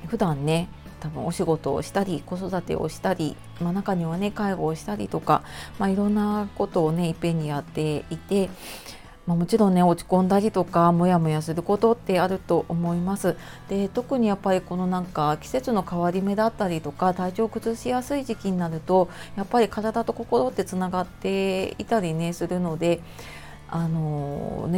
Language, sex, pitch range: Japanese, female, 165-205 Hz